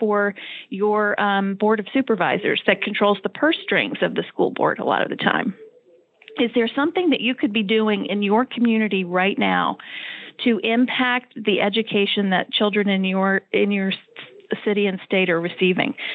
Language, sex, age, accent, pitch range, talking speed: English, female, 40-59, American, 205-250 Hz, 180 wpm